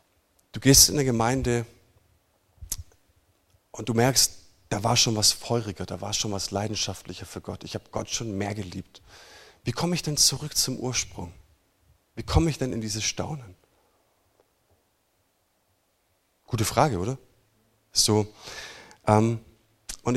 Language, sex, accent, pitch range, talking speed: German, male, German, 95-120 Hz, 135 wpm